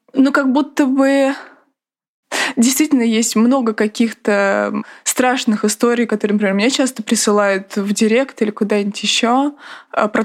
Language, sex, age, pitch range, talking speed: Russian, female, 20-39, 225-270 Hz, 125 wpm